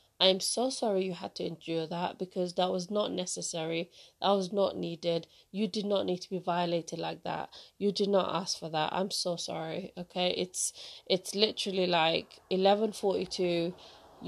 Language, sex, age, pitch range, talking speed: English, female, 20-39, 180-205 Hz, 170 wpm